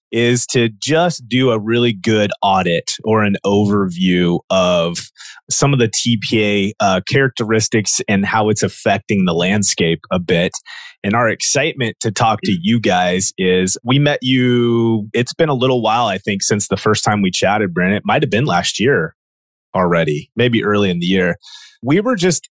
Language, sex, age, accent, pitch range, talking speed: English, male, 30-49, American, 100-125 Hz, 180 wpm